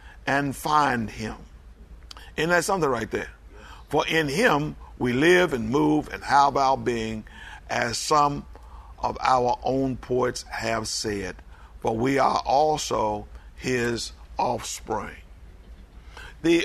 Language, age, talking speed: English, 50-69, 125 wpm